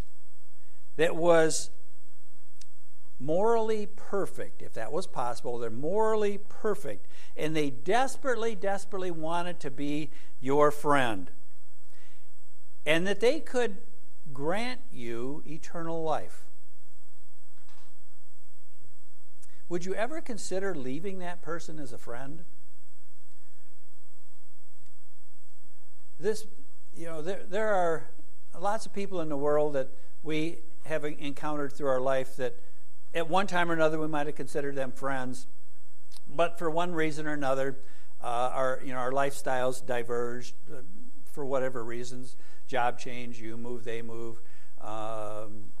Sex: male